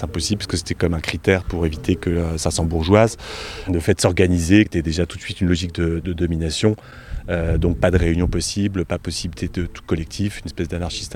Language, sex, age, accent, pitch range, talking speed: French, male, 30-49, French, 85-105 Hz, 230 wpm